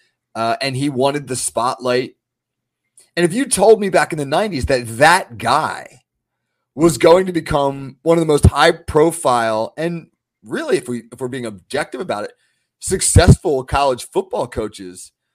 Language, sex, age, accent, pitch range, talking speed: English, male, 30-49, American, 125-170 Hz, 170 wpm